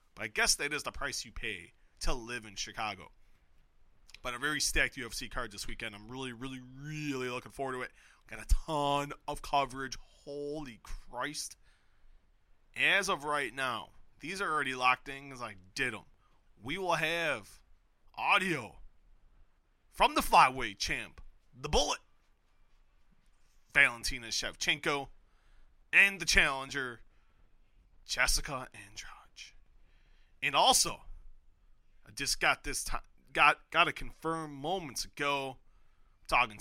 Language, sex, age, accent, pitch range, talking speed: English, male, 30-49, American, 105-140 Hz, 130 wpm